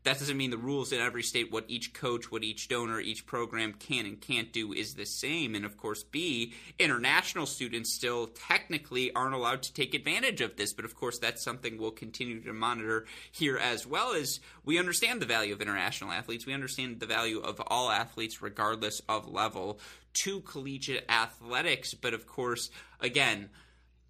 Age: 20-39